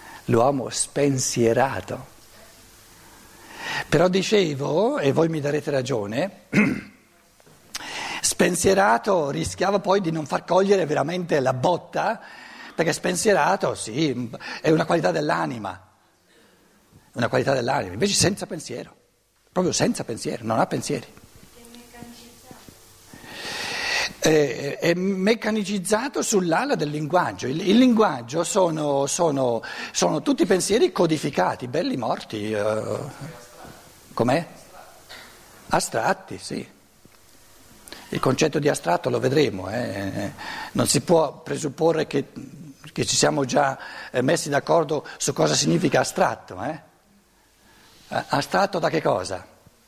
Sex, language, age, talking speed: male, Italian, 60-79, 100 wpm